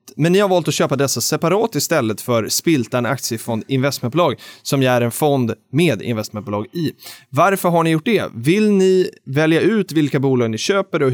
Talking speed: 190 wpm